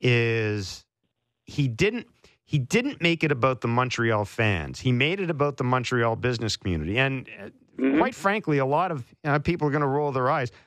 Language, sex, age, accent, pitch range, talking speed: English, male, 50-69, American, 125-155 Hz, 190 wpm